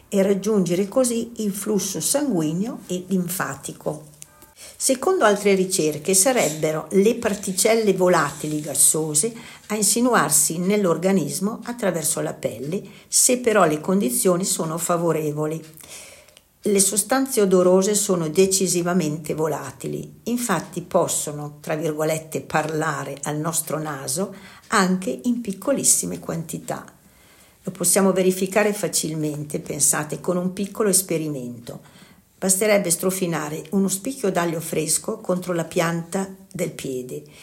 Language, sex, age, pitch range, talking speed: Italian, female, 60-79, 155-200 Hz, 105 wpm